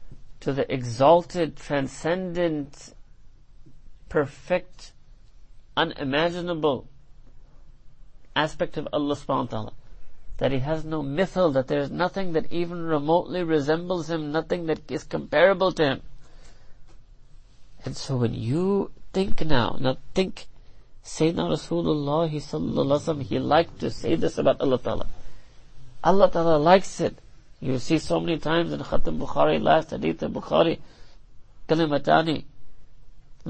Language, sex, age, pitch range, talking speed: English, male, 50-69, 125-170 Hz, 125 wpm